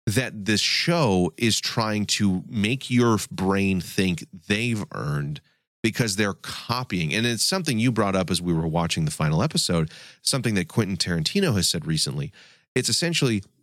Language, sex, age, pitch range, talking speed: English, male, 30-49, 95-130 Hz, 165 wpm